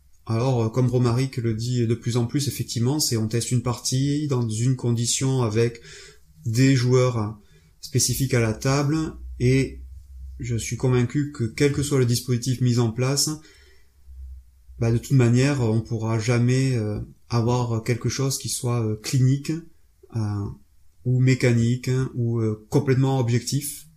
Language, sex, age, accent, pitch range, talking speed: French, male, 30-49, French, 95-140 Hz, 140 wpm